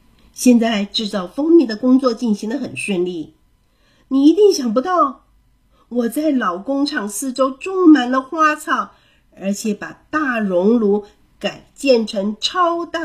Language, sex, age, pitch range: Chinese, female, 50-69, 200-300 Hz